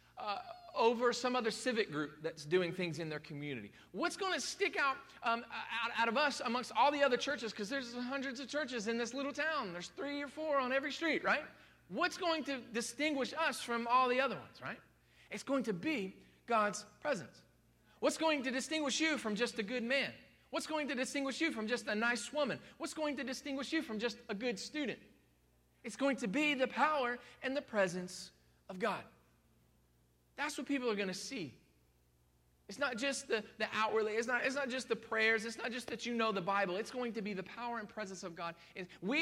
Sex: male